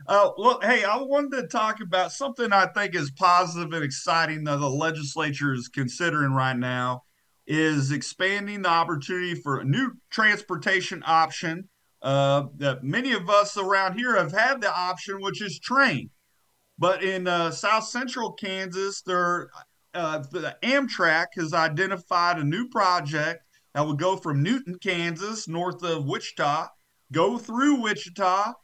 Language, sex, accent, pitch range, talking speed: English, male, American, 155-200 Hz, 145 wpm